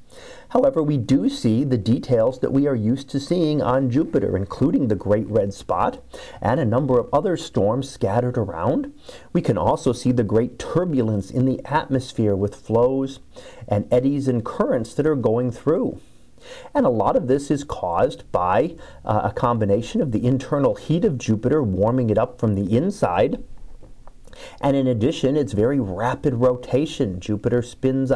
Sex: male